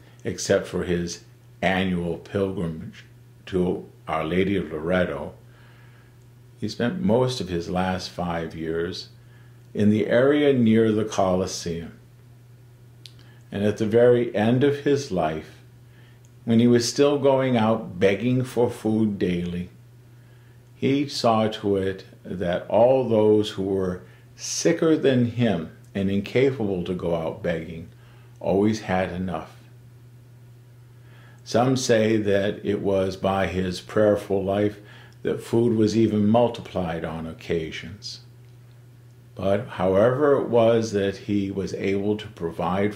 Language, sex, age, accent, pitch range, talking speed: English, male, 50-69, American, 95-120 Hz, 125 wpm